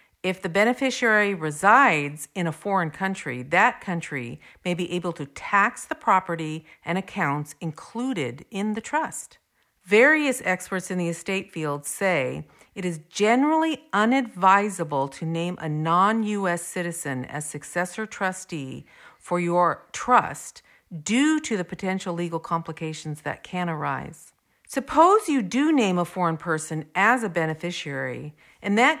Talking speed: 135 wpm